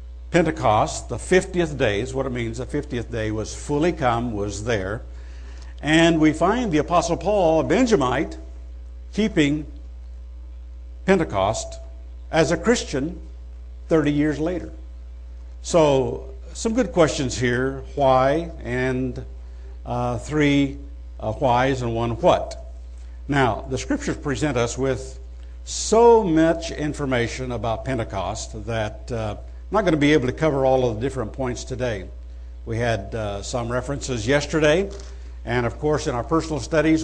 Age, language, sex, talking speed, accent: 60-79, English, male, 140 wpm, American